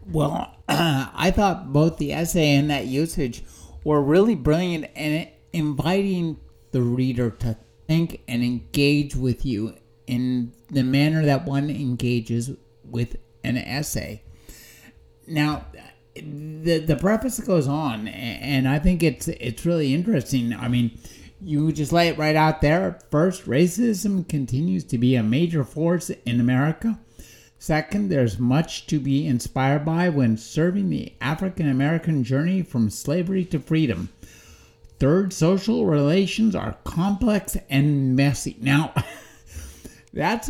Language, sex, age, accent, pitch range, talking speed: English, male, 50-69, American, 125-165 Hz, 130 wpm